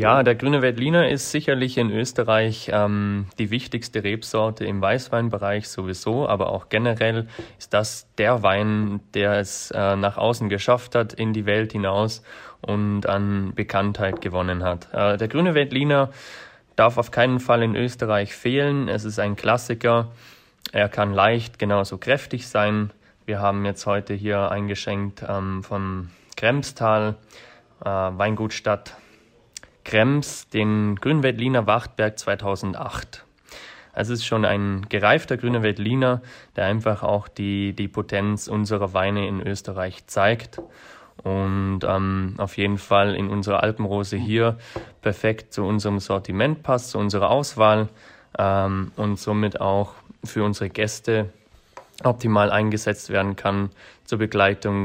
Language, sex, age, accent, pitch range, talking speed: German, male, 20-39, German, 100-115 Hz, 130 wpm